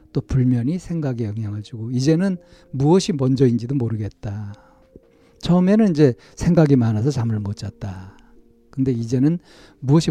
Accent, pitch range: native, 115-160 Hz